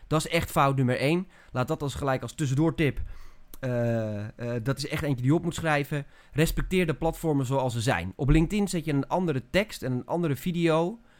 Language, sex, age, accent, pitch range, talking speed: Dutch, male, 30-49, Dutch, 120-165 Hz, 215 wpm